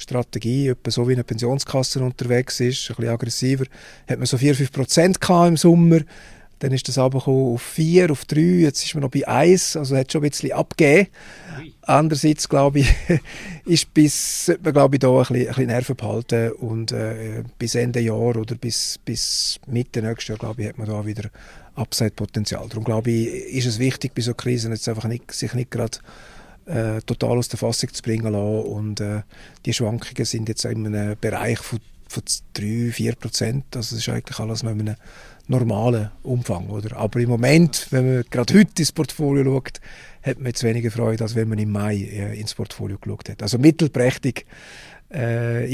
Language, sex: German, male